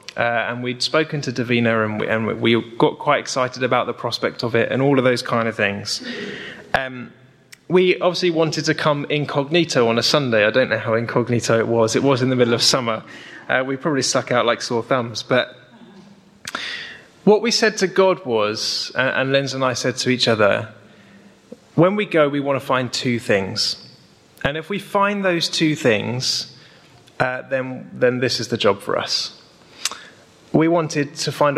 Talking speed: 190 wpm